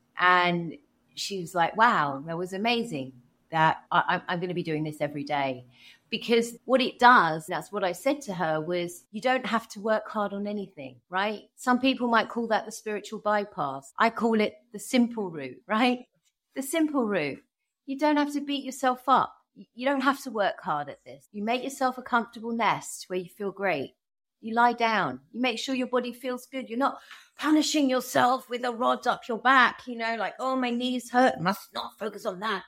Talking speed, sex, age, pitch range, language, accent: 205 wpm, female, 30-49, 180-250 Hz, English, British